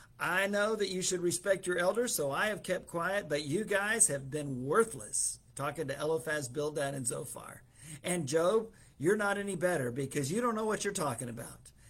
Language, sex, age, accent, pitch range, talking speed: English, male, 50-69, American, 130-175 Hz, 195 wpm